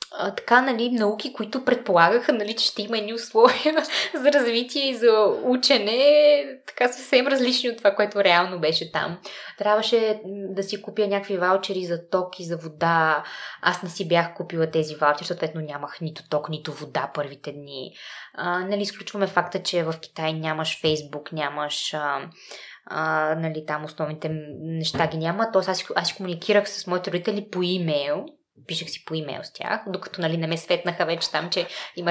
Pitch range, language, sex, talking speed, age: 160-210 Hz, Bulgarian, female, 170 wpm, 20-39